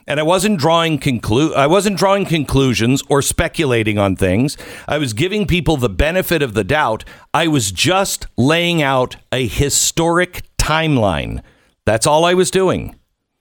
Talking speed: 155 wpm